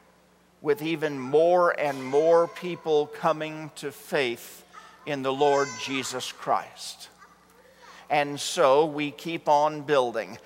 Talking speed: 115 wpm